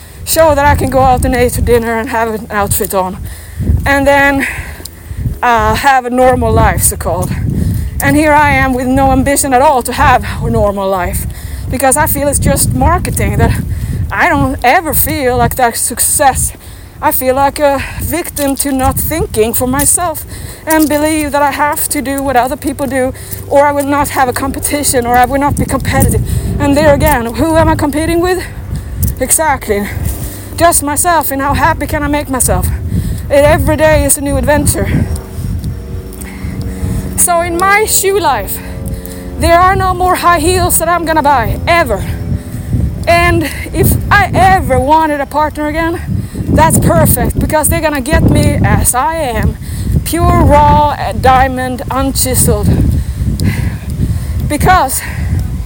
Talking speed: 160 wpm